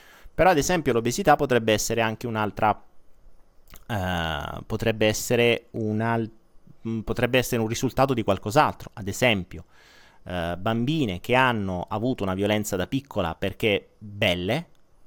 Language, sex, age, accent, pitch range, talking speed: Italian, male, 30-49, native, 105-135 Hz, 120 wpm